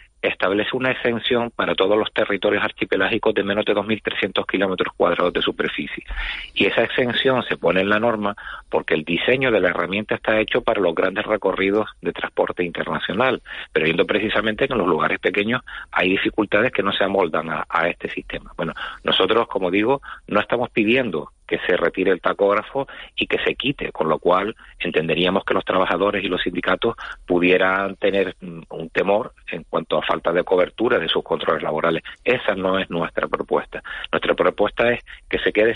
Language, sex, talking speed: Spanish, male, 180 wpm